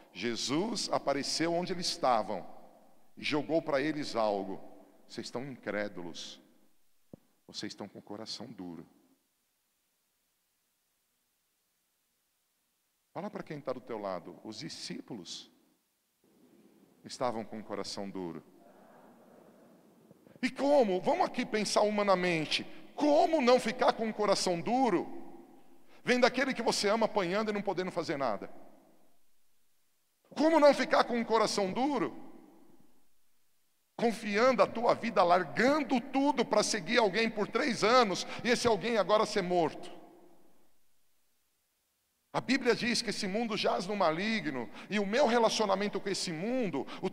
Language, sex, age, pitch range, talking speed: Portuguese, male, 50-69, 150-230 Hz, 125 wpm